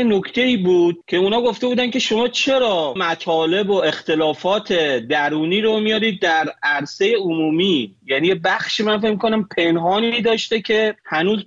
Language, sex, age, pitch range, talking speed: Persian, male, 30-49, 165-225 Hz, 145 wpm